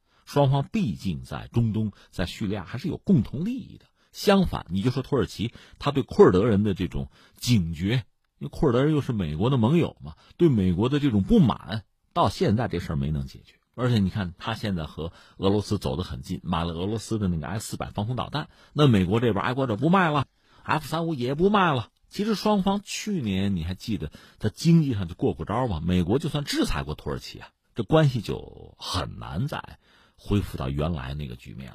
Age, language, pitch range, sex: 50-69, Chinese, 90-130 Hz, male